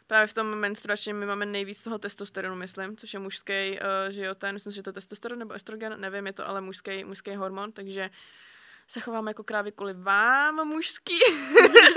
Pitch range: 185-215 Hz